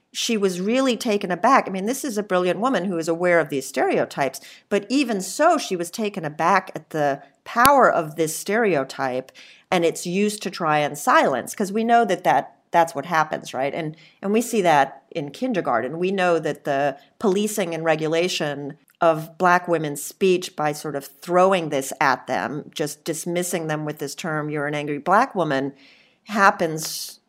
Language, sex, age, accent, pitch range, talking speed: English, female, 40-59, American, 150-190 Hz, 185 wpm